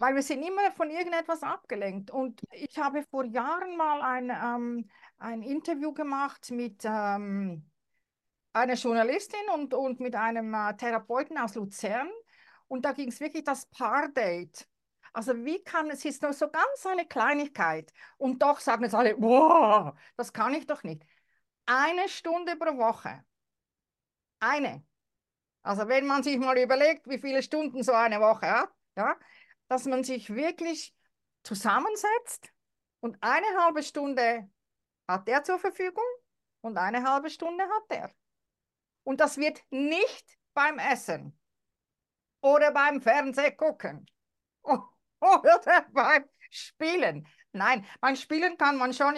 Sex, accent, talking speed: female, Austrian, 140 wpm